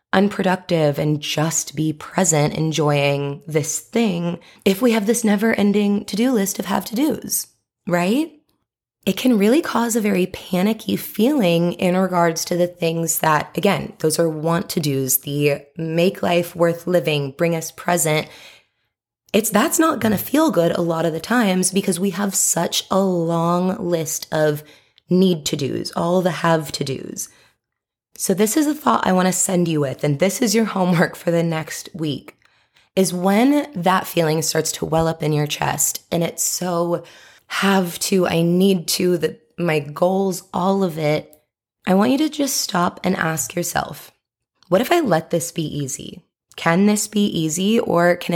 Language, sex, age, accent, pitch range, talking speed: English, female, 20-39, American, 160-200 Hz, 165 wpm